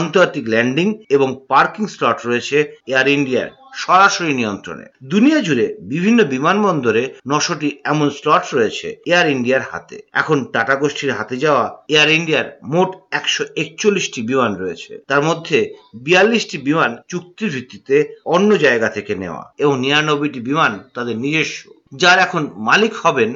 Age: 50-69